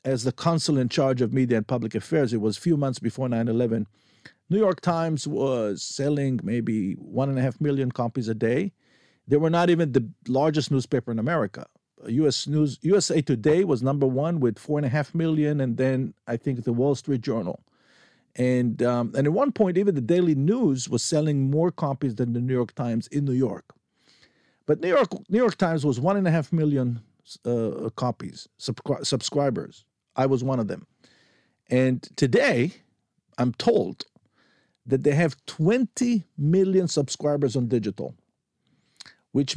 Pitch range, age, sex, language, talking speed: 125-165 Hz, 50-69, male, Hebrew, 175 wpm